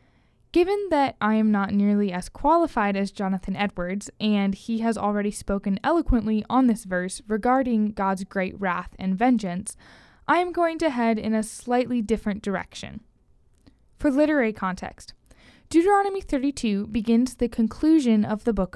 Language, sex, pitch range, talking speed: English, female, 195-245 Hz, 150 wpm